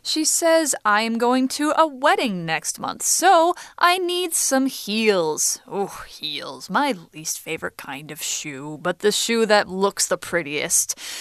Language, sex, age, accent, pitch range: Chinese, female, 20-39, American, 180-255 Hz